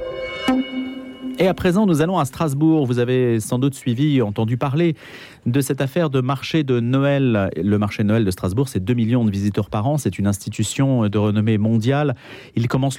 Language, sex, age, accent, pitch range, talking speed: French, male, 40-59, French, 120-160 Hz, 190 wpm